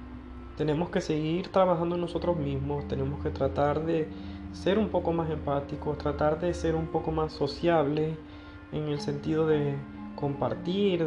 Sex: male